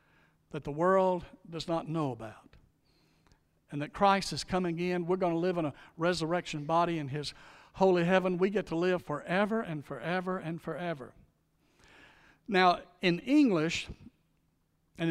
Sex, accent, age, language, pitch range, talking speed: male, American, 60-79, English, 160-190 Hz, 150 wpm